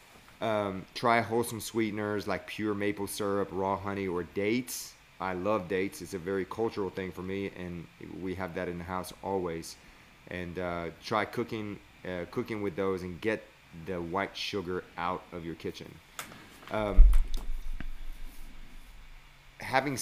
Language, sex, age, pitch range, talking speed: English, male, 30-49, 90-105 Hz, 145 wpm